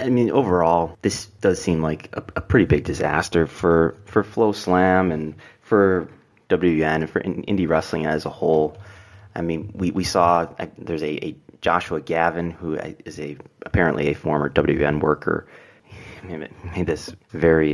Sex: male